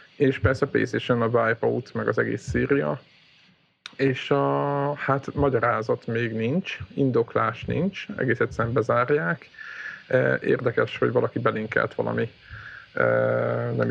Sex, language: male, Hungarian